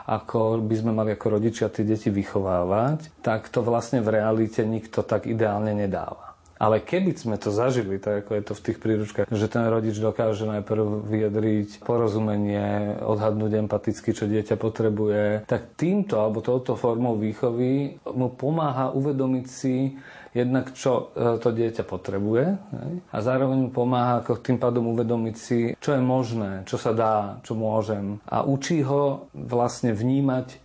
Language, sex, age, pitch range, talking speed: Slovak, male, 40-59, 110-130 Hz, 155 wpm